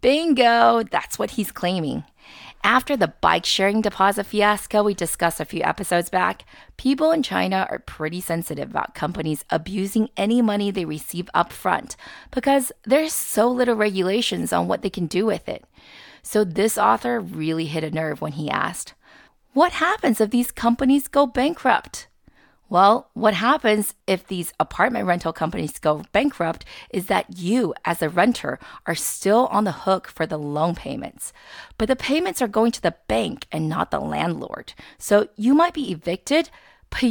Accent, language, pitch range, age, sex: American, Chinese, 175-255 Hz, 30-49, female